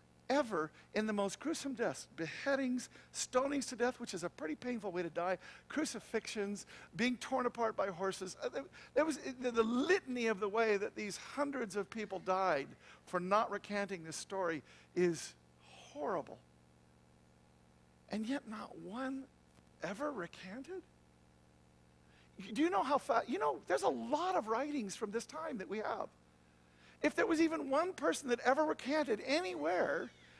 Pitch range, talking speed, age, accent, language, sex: 170-270 Hz, 155 wpm, 50-69, American, English, male